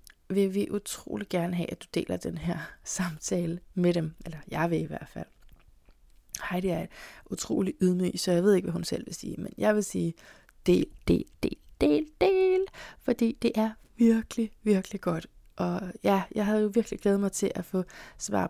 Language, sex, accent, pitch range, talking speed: Danish, female, native, 175-205 Hz, 190 wpm